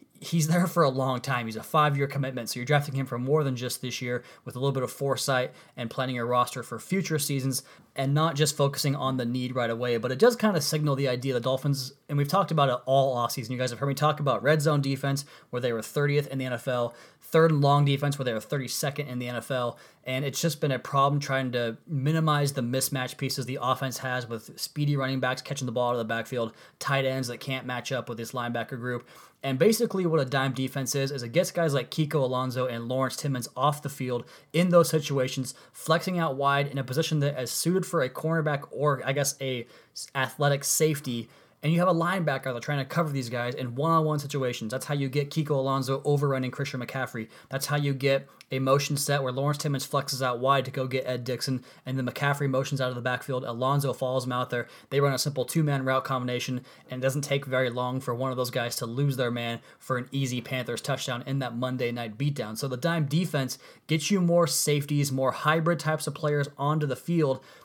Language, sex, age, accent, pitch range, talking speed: English, male, 20-39, American, 125-145 Hz, 235 wpm